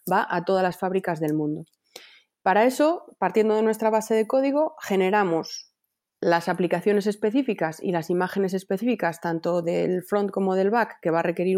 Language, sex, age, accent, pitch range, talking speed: Spanish, female, 30-49, Spanish, 170-215 Hz, 170 wpm